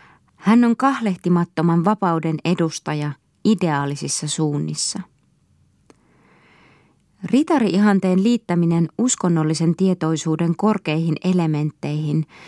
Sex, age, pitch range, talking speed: female, 20-39, 160-205 Hz, 65 wpm